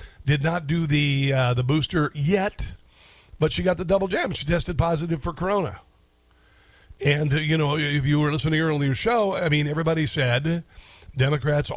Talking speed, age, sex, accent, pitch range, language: 185 wpm, 50-69, male, American, 130-165 Hz, English